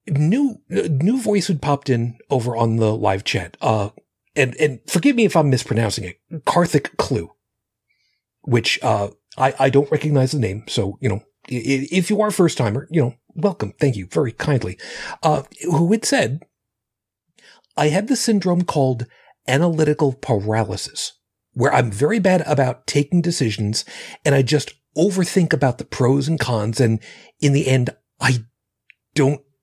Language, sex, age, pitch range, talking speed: English, male, 40-59, 110-155 Hz, 160 wpm